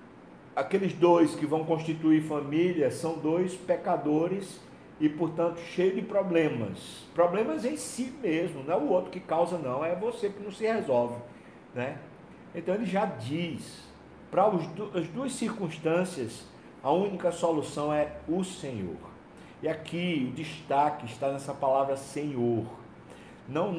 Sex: male